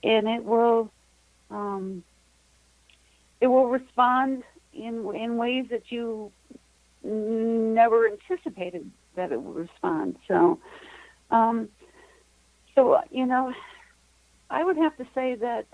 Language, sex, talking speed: English, female, 110 wpm